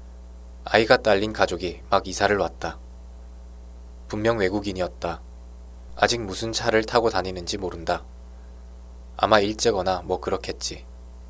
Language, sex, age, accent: Korean, male, 20-39, native